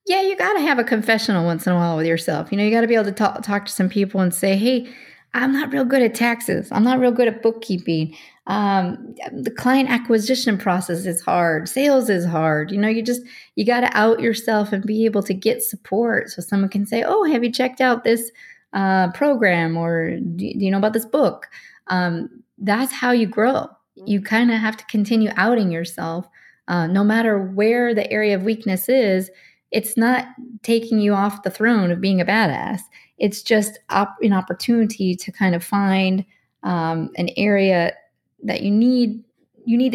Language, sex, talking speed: English, female, 205 wpm